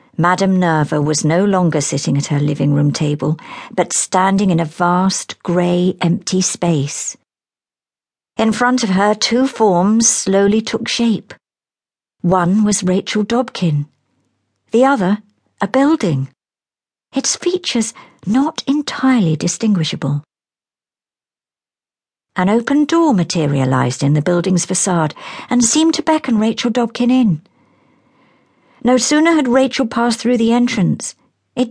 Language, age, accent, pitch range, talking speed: English, 50-69, British, 150-230 Hz, 125 wpm